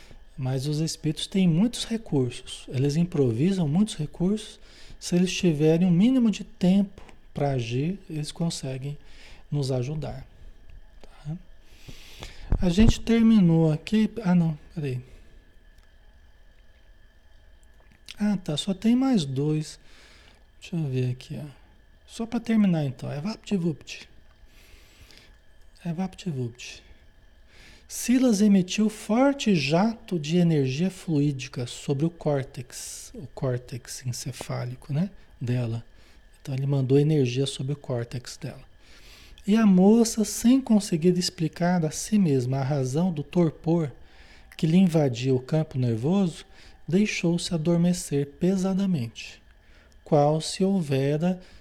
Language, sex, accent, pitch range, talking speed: Portuguese, male, Brazilian, 125-185 Hz, 115 wpm